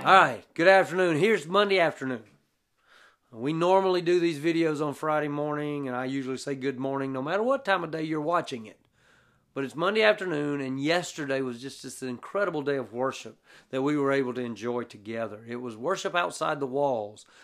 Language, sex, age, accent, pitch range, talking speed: English, male, 40-59, American, 130-185 Hz, 195 wpm